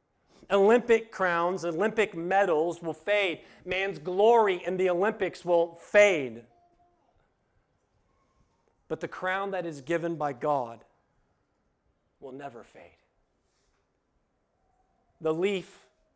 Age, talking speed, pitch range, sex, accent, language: 40-59, 95 wpm, 160-200 Hz, male, American, English